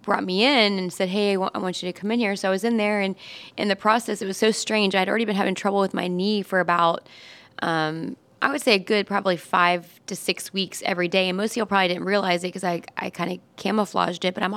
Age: 20-39